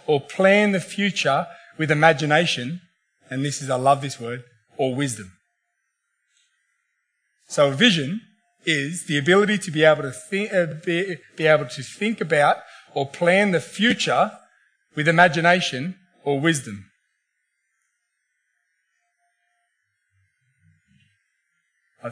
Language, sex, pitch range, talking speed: English, male, 140-190 Hz, 115 wpm